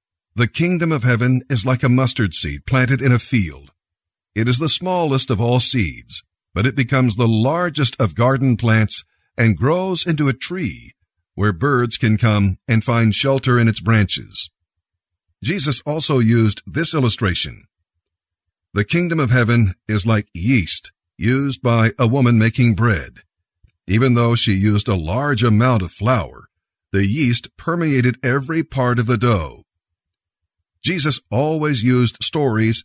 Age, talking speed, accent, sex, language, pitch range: 50-69, 150 wpm, American, male, English, 95-130 Hz